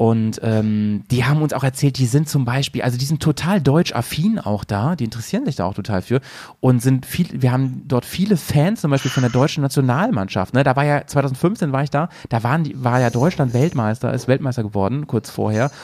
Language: German